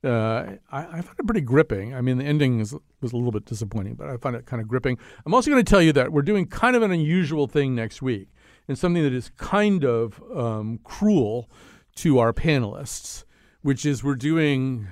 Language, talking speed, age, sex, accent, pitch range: English, 215 wpm, 50-69, male, American, 115-155 Hz